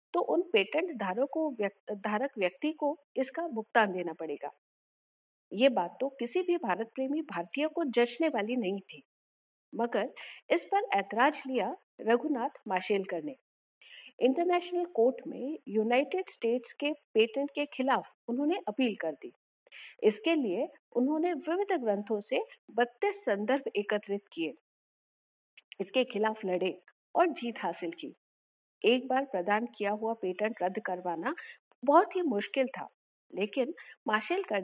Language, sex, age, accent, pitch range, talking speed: Hindi, female, 50-69, native, 205-305 Hz, 130 wpm